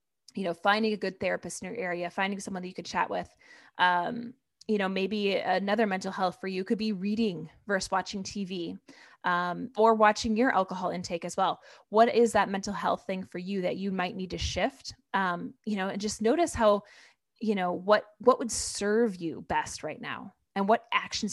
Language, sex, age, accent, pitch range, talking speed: English, female, 20-39, American, 185-230 Hz, 205 wpm